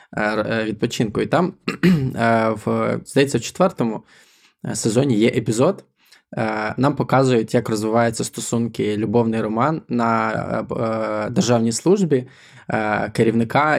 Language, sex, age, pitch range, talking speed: Ukrainian, male, 20-39, 115-135 Hz, 90 wpm